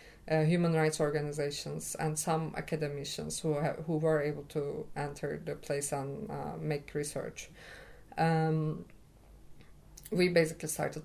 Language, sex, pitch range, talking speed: English, female, 150-165 Hz, 130 wpm